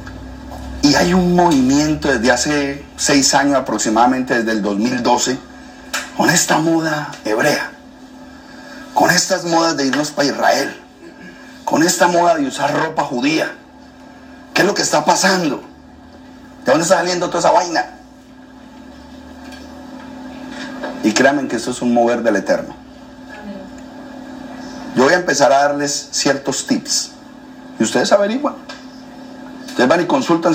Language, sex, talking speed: Spanish, male, 130 wpm